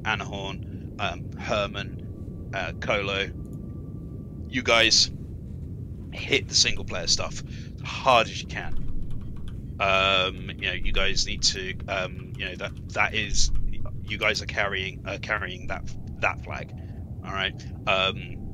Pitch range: 95-110 Hz